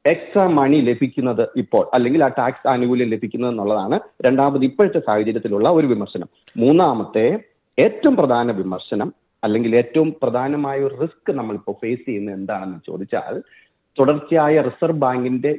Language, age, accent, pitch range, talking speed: Malayalam, 40-59, native, 110-140 Hz, 125 wpm